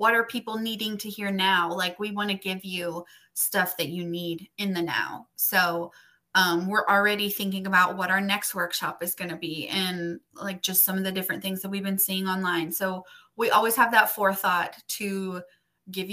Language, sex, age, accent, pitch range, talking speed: English, female, 20-39, American, 185-210 Hz, 205 wpm